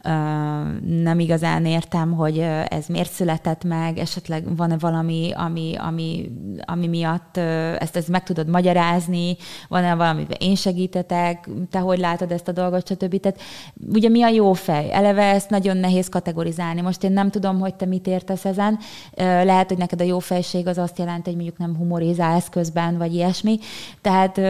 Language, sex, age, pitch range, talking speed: Hungarian, female, 20-39, 165-190 Hz, 170 wpm